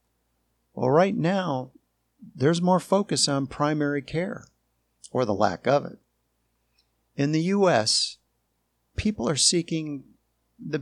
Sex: male